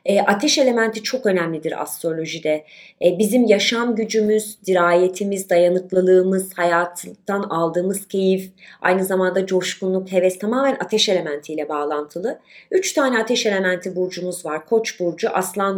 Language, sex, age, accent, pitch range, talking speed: Turkish, female, 30-49, native, 175-235 Hz, 120 wpm